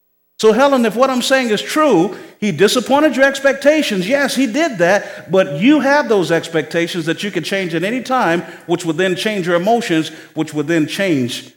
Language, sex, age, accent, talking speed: English, male, 50-69, American, 195 wpm